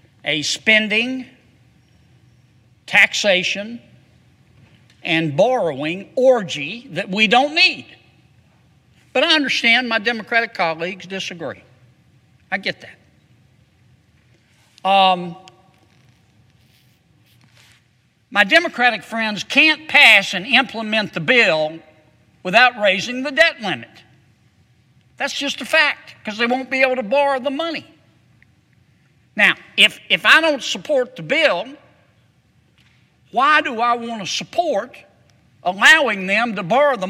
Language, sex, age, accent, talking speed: English, male, 60-79, American, 110 wpm